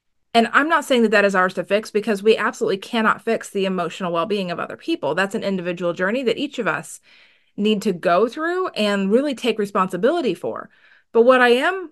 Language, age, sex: English, 30-49, female